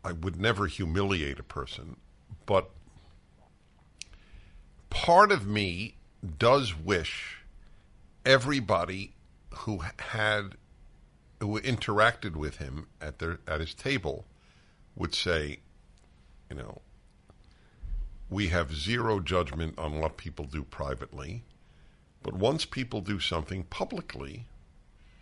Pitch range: 75-105 Hz